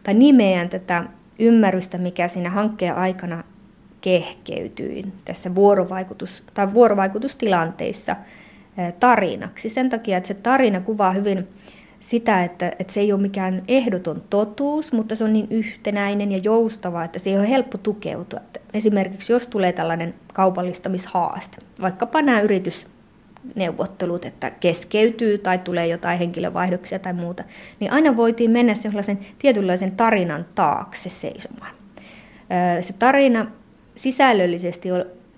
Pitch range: 180-220 Hz